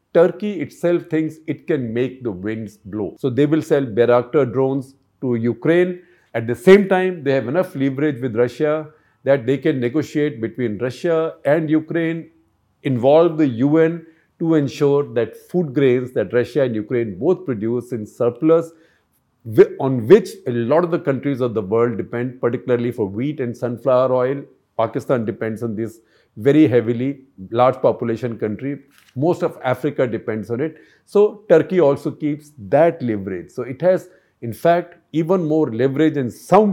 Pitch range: 120-160 Hz